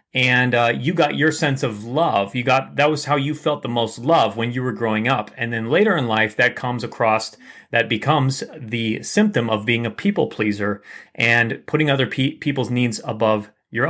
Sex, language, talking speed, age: male, English, 205 wpm, 30-49